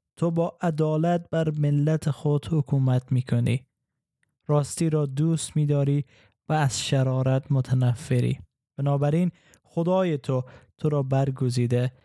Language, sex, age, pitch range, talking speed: Persian, male, 20-39, 130-155 Hz, 115 wpm